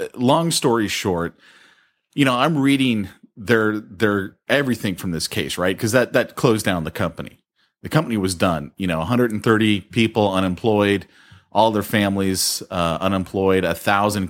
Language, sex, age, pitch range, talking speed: English, male, 30-49, 90-115 Hz, 170 wpm